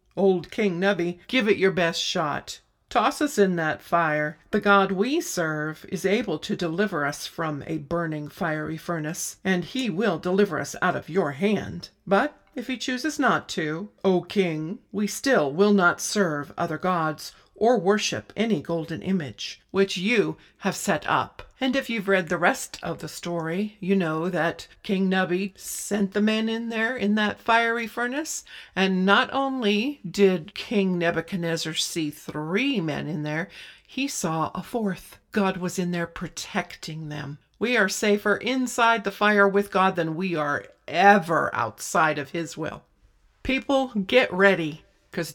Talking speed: 165 wpm